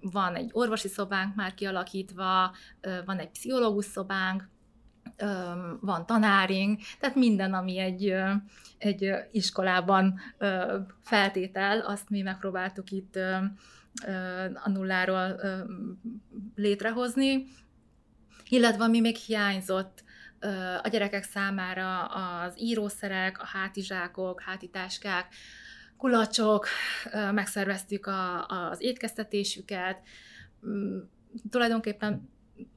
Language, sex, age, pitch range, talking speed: Hungarian, female, 20-39, 185-210 Hz, 85 wpm